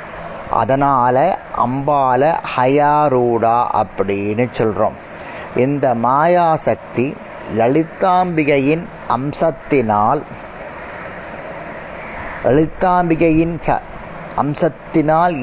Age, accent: 30-49, native